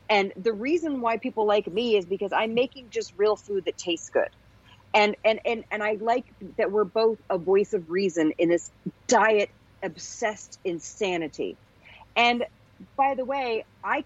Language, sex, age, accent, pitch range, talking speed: English, female, 40-59, American, 175-235 Hz, 170 wpm